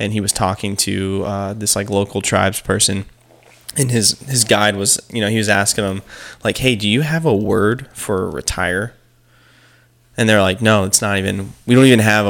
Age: 20-39